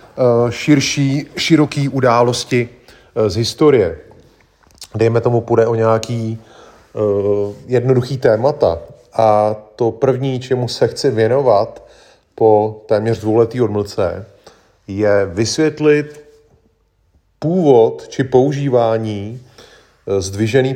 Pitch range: 105-125 Hz